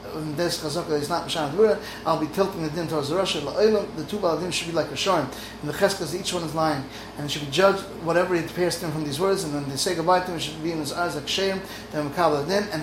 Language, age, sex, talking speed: English, 30-49, male, 255 wpm